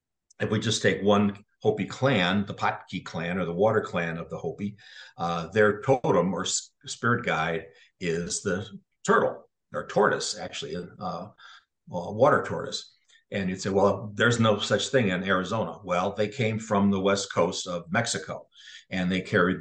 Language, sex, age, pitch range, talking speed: English, male, 50-69, 95-110 Hz, 170 wpm